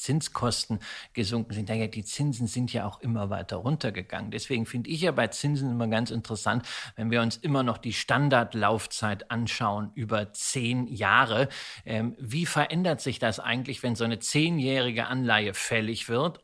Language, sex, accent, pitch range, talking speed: German, male, German, 110-140 Hz, 160 wpm